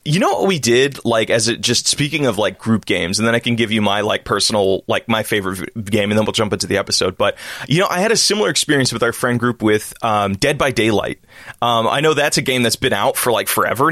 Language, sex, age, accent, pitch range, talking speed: English, male, 20-39, American, 105-135 Hz, 270 wpm